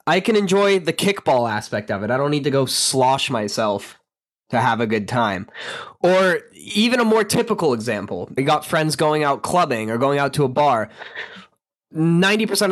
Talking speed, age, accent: 185 wpm, 10-29, American